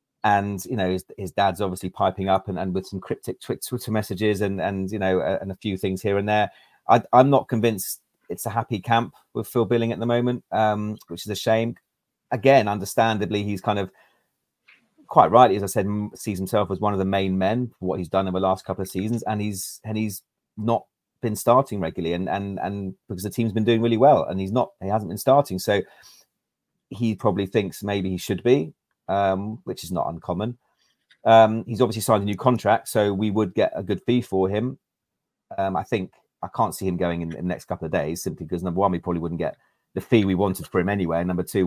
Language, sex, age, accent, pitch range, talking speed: English, male, 30-49, British, 95-110 Hz, 230 wpm